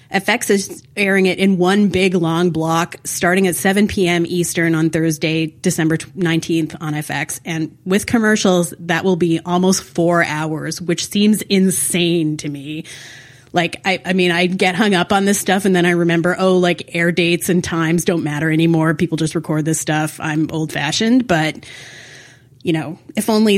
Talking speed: 180 wpm